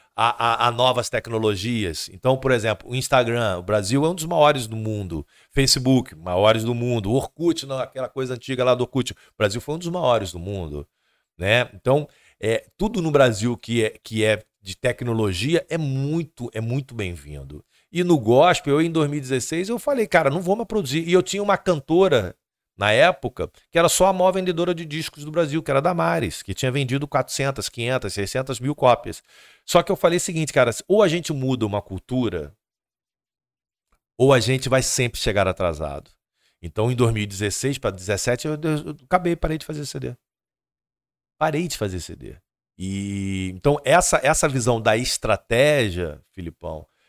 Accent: Brazilian